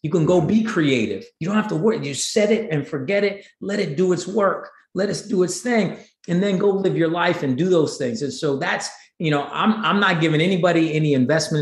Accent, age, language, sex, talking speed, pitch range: American, 40-59, English, male, 255 wpm, 140-185 Hz